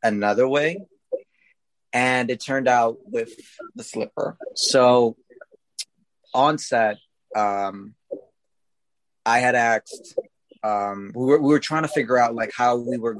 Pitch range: 115-170 Hz